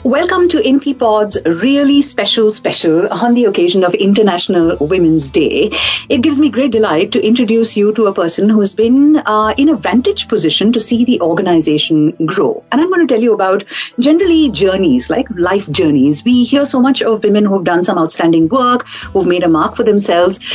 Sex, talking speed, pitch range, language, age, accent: female, 195 wpm, 185-280 Hz, English, 50-69, Indian